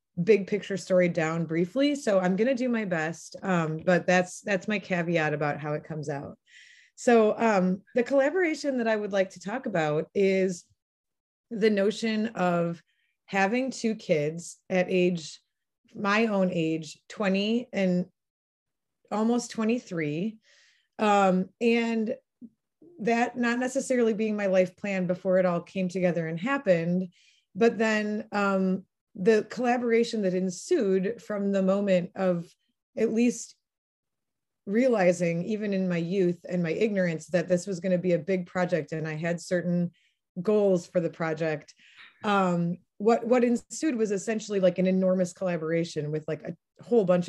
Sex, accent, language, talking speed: female, American, English, 150 wpm